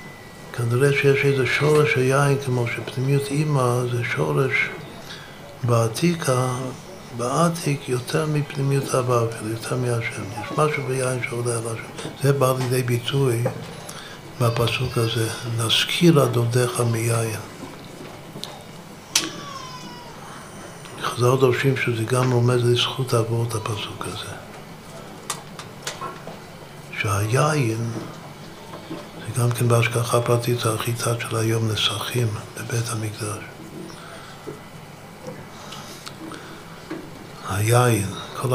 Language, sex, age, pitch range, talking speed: Hebrew, male, 60-79, 115-135 Hz, 90 wpm